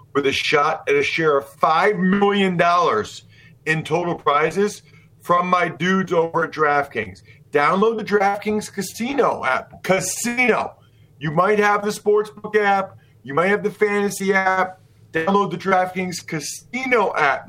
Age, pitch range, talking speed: 40-59, 140-200 Hz, 140 wpm